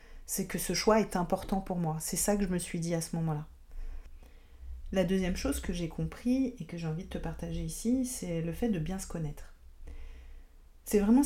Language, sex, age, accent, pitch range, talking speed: French, female, 40-59, French, 155-200 Hz, 220 wpm